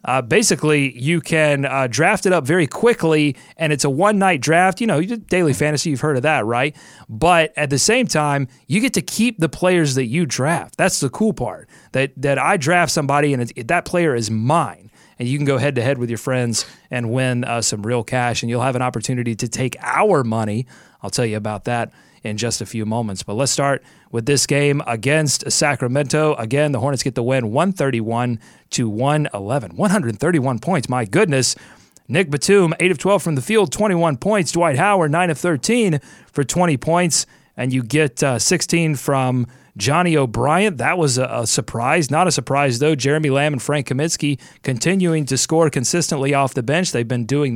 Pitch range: 125-170 Hz